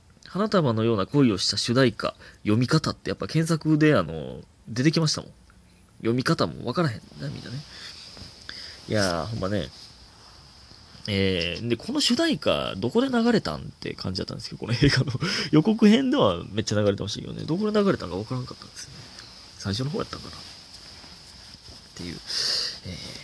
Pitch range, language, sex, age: 95-140 Hz, Japanese, male, 20-39